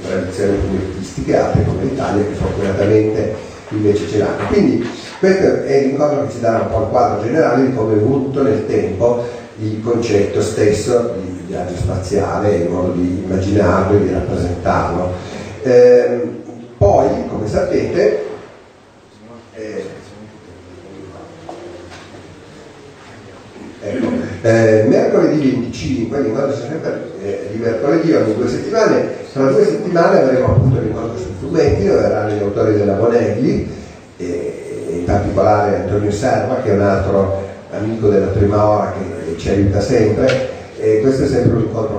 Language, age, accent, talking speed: Italian, 40-59, native, 135 wpm